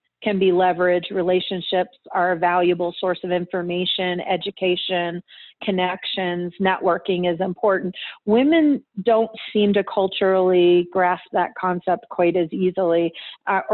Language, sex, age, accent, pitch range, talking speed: English, female, 40-59, American, 180-195 Hz, 120 wpm